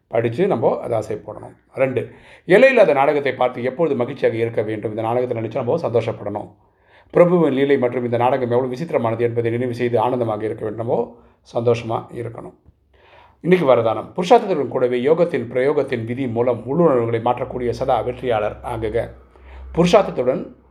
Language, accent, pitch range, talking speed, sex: Tamil, native, 120-140 Hz, 135 wpm, male